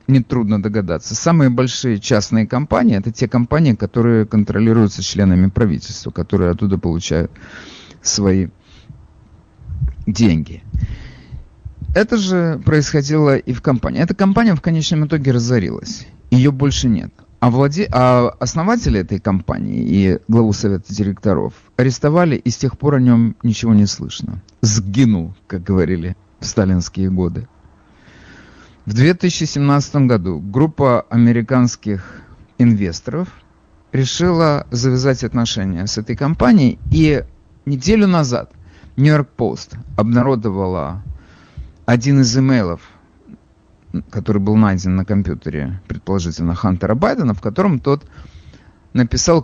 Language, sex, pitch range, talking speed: Russian, male, 95-135 Hz, 110 wpm